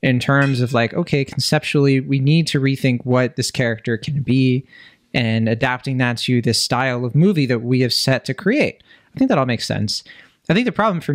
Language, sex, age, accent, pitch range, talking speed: English, male, 20-39, American, 130-160 Hz, 215 wpm